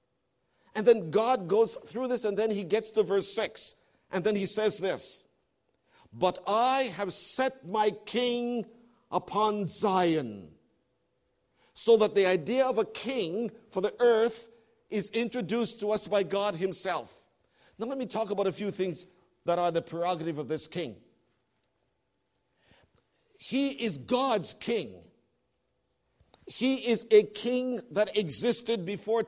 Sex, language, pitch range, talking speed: male, English, 175-225 Hz, 140 wpm